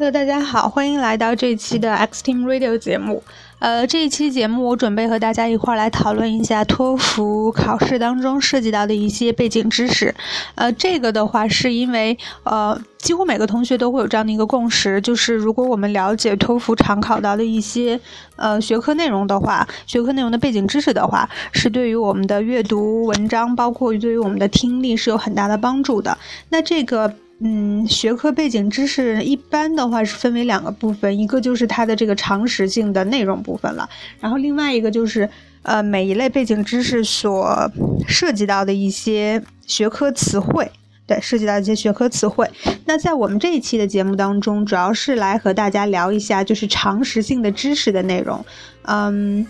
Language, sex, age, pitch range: Chinese, female, 20-39, 210-250 Hz